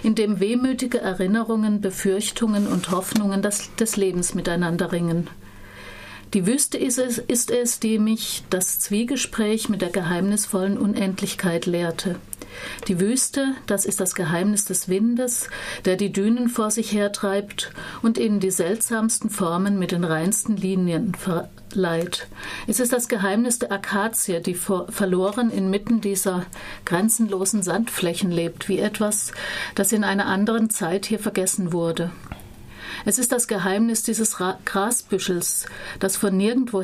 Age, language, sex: 50-69, German, female